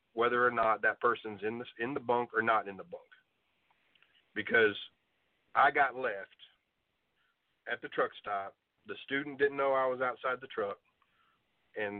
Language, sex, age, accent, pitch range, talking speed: English, male, 40-59, American, 115-140 Hz, 160 wpm